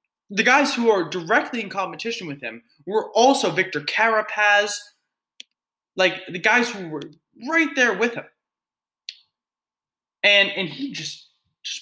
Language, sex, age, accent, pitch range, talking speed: English, male, 20-39, American, 150-245 Hz, 135 wpm